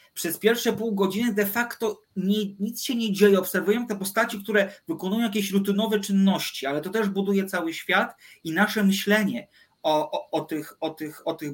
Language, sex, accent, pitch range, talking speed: Polish, male, native, 165-205 Hz, 180 wpm